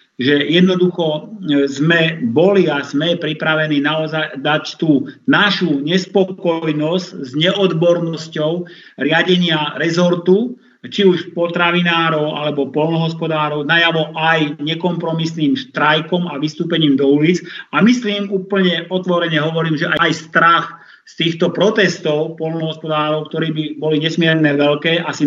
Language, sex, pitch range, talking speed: Slovak, male, 155-180 Hz, 110 wpm